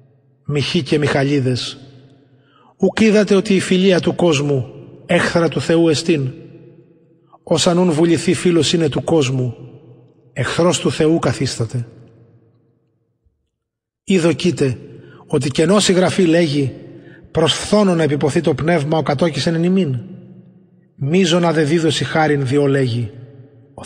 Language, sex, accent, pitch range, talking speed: Greek, male, native, 130-170 Hz, 120 wpm